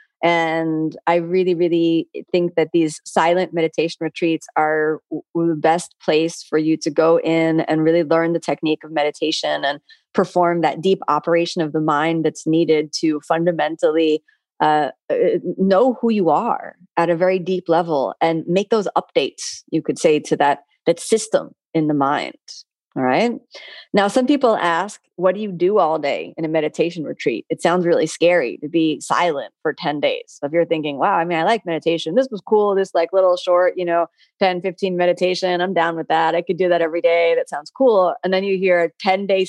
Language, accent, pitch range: English, American, 160-215 Hz